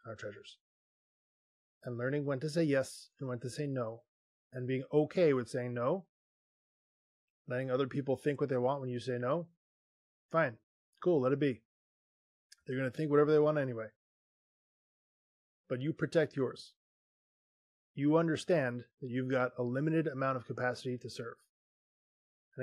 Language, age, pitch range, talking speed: English, 20-39, 125-150 Hz, 160 wpm